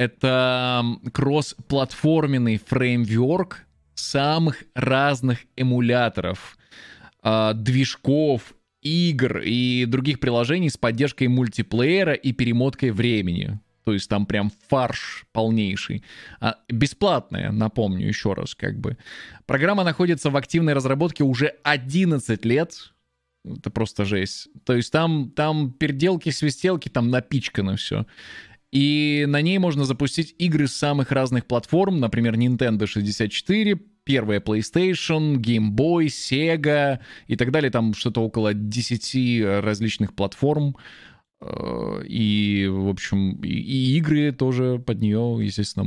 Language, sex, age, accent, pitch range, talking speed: Russian, male, 20-39, native, 110-145 Hz, 115 wpm